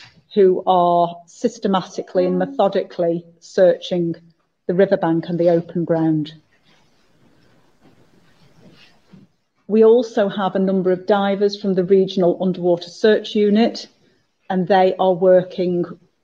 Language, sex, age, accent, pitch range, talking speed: English, female, 40-59, British, 170-195 Hz, 105 wpm